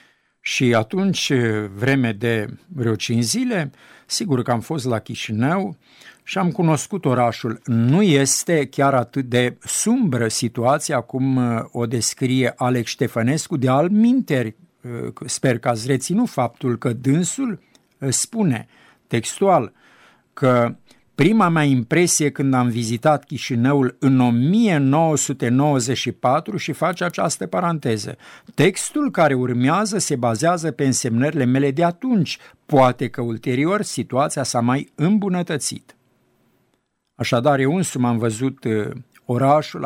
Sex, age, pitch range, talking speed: male, 50-69, 120-155 Hz, 115 wpm